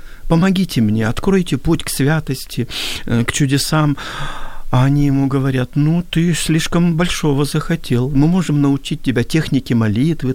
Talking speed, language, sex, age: 135 wpm, Ukrainian, male, 50-69